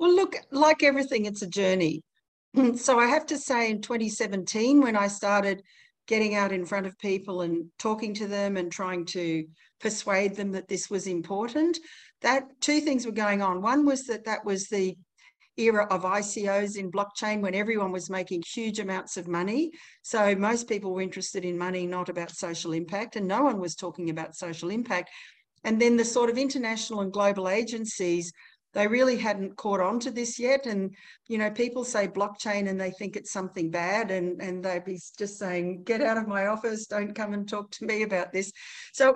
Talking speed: 200 wpm